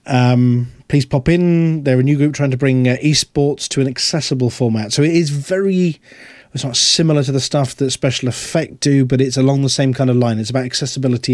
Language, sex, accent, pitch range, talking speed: English, male, British, 120-150 Hz, 220 wpm